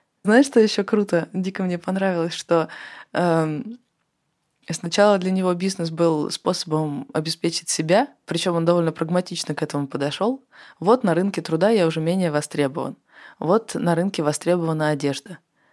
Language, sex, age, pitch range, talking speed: Russian, female, 20-39, 150-180 Hz, 140 wpm